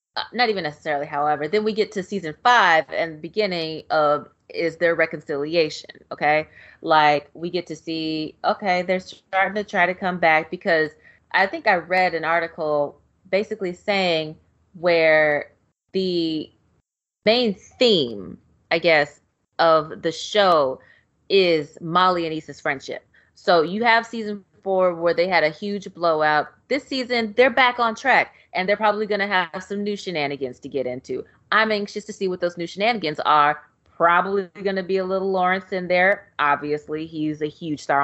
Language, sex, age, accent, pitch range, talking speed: English, female, 20-39, American, 155-200 Hz, 165 wpm